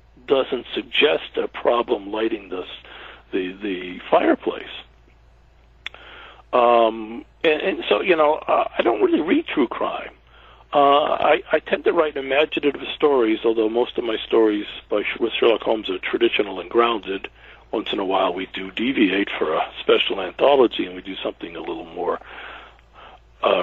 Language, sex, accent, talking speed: English, male, American, 155 wpm